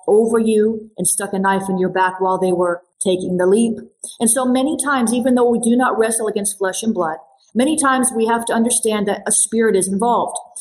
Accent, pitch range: American, 200-240 Hz